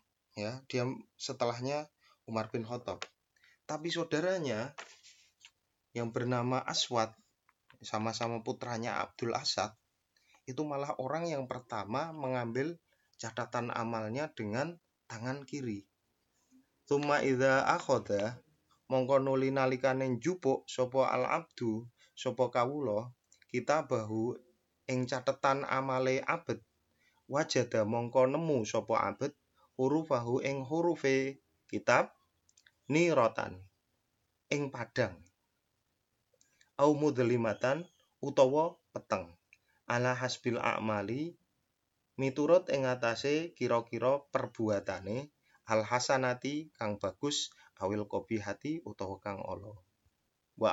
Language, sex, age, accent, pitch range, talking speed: Indonesian, male, 30-49, native, 110-135 Hz, 85 wpm